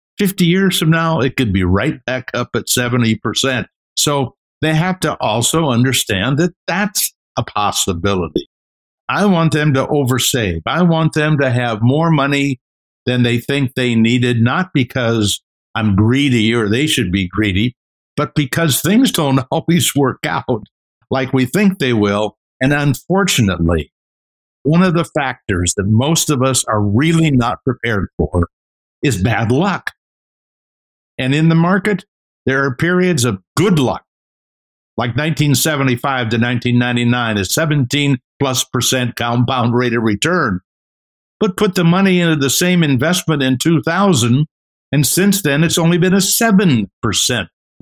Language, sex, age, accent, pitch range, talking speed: English, male, 60-79, American, 120-165 Hz, 145 wpm